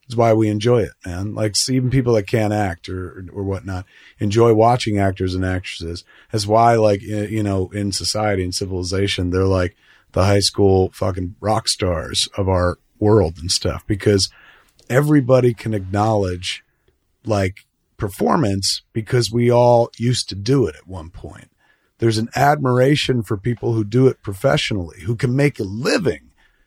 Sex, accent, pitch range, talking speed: male, American, 100-130 Hz, 160 wpm